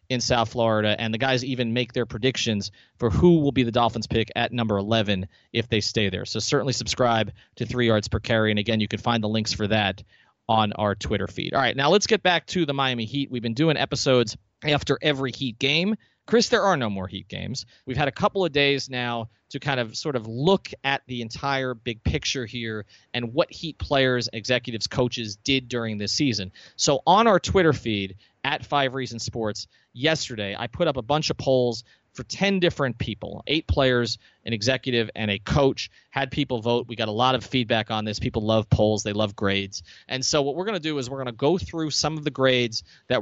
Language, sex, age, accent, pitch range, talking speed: English, male, 30-49, American, 110-140 Hz, 225 wpm